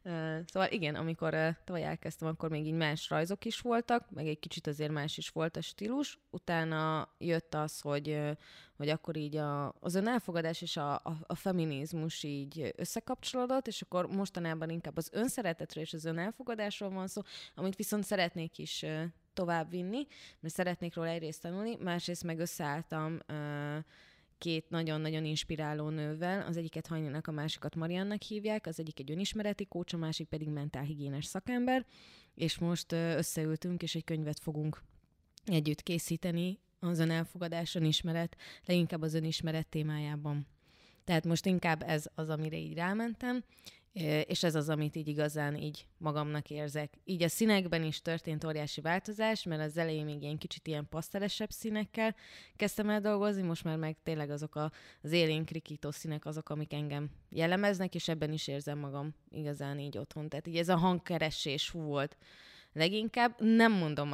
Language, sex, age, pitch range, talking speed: Hungarian, female, 20-39, 150-180 Hz, 155 wpm